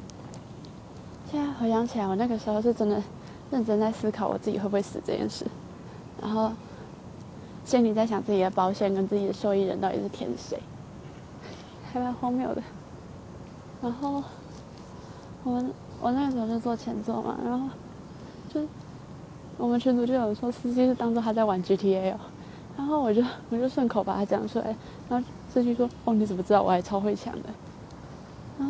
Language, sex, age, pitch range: Chinese, female, 20-39, 195-240 Hz